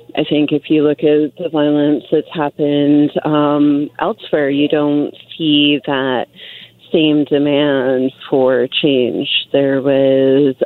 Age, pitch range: 30-49, 140-155 Hz